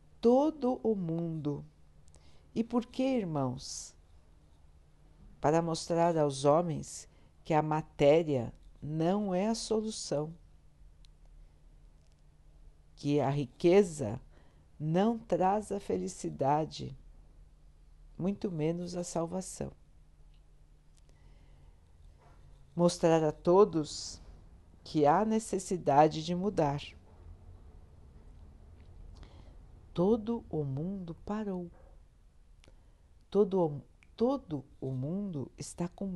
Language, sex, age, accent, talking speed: Portuguese, female, 50-69, Brazilian, 80 wpm